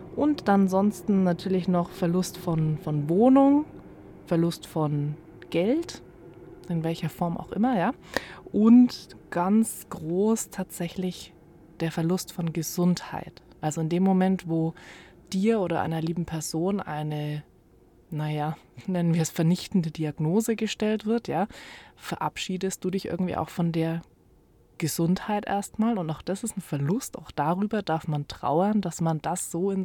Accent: German